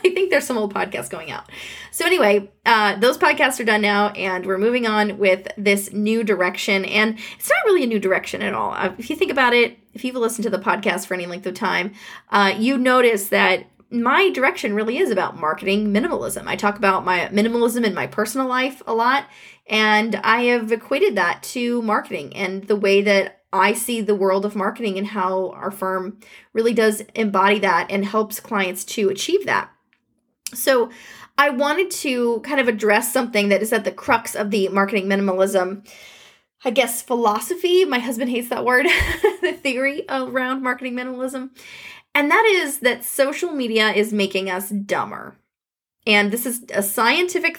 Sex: female